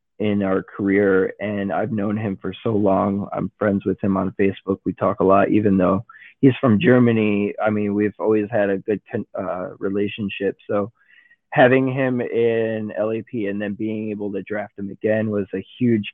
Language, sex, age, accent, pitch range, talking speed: English, male, 20-39, American, 105-120 Hz, 185 wpm